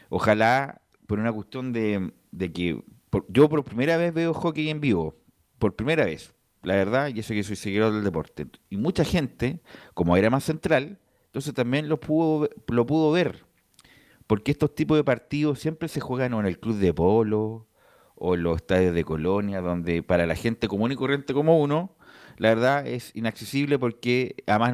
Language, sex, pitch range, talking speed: Spanish, male, 95-135 Hz, 185 wpm